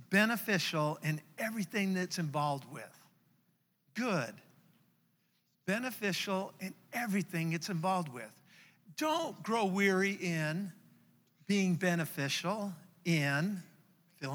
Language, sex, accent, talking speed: English, male, American, 90 wpm